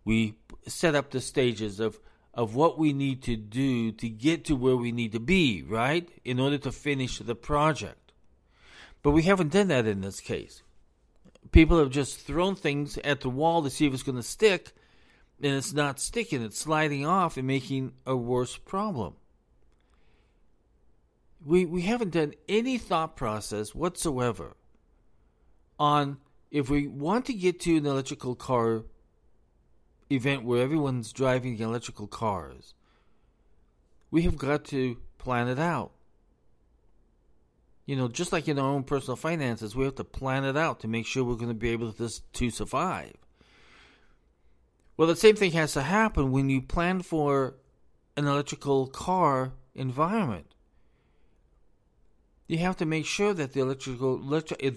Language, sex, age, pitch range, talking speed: English, male, 50-69, 115-155 Hz, 155 wpm